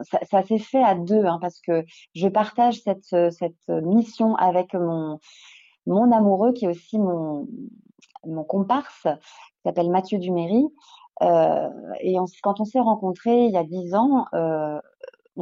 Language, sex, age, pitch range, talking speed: French, female, 30-49, 175-215 Hz, 160 wpm